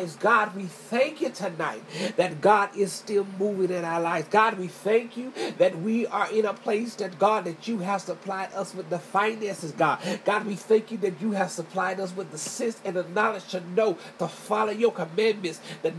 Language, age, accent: English, 40-59, American